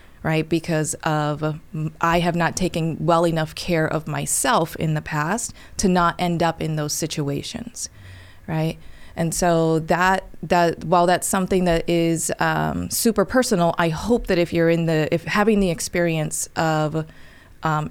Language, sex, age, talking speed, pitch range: English, female, 20-39, 160 wpm, 155-180 Hz